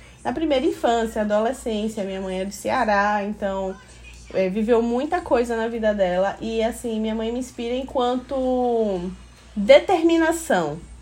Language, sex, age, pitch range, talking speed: Portuguese, female, 20-39, 195-285 Hz, 135 wpm